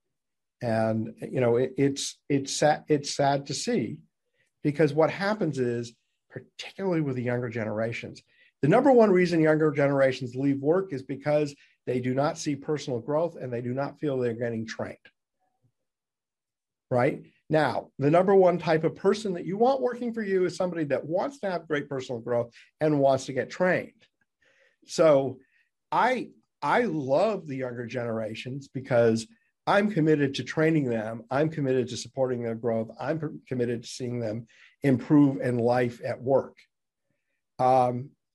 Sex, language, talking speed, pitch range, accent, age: male, English, 155 wpm, 120-160 Hz, American, 50-69